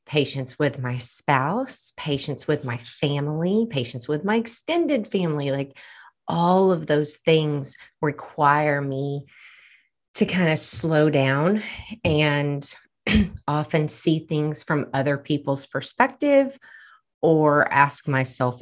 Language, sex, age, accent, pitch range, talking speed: English, female, 30-49, American, 135-160 Hz, 115 wpm